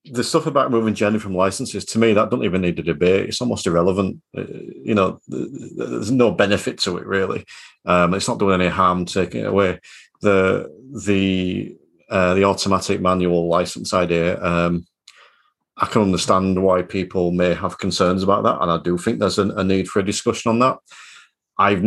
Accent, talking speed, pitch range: British, 185 wpm, 90-110 Hz